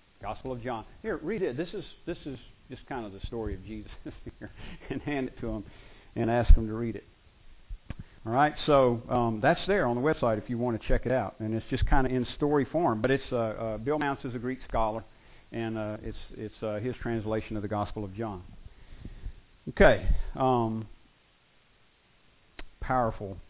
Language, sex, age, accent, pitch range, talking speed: English, male, 50-69, American, 105-130 Hz, 200 wpm